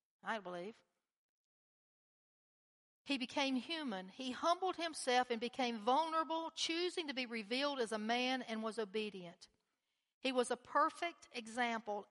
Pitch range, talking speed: 195-260 Hz, 130 wpm